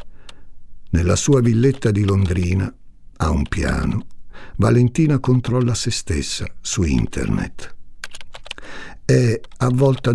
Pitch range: 85-110 Hz